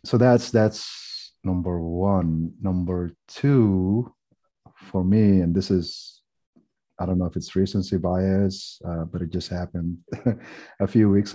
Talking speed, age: 145 wpm, 30-49